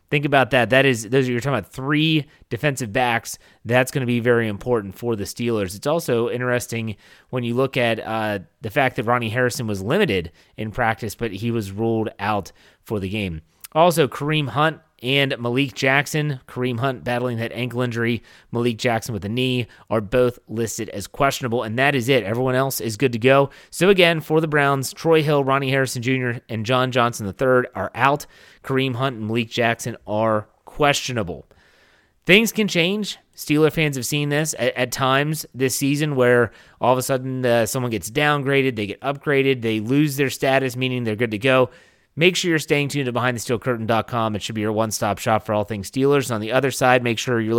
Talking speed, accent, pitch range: 200 wpm, American, 115-140 Hz